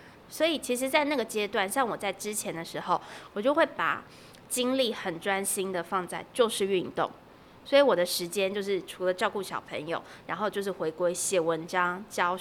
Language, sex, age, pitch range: Chinese, female, 20-39, 180-235 Hz